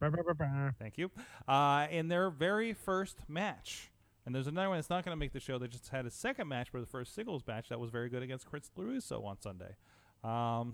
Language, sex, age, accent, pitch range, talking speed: English, male, 30-49, American, 125-165 Hz, 220 wpm